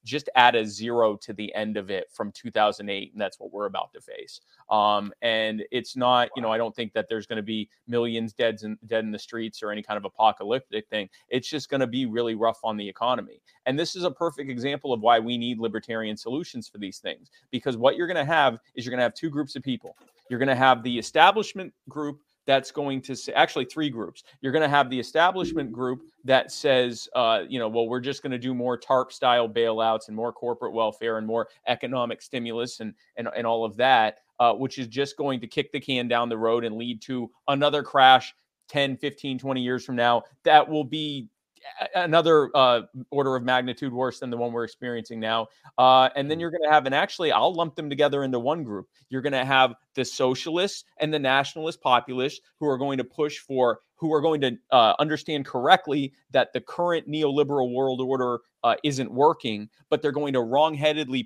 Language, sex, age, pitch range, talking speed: English, male, 30-49, 115-145 Hz, 220 wpm